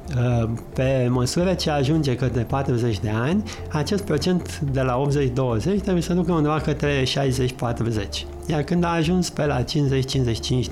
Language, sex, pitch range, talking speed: Romanian, male, 125-155 Hz, 145 wpm